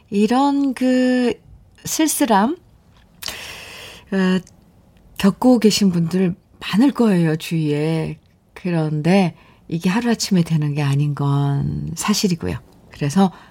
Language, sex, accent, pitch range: Korean, female, native, 160-230 Hz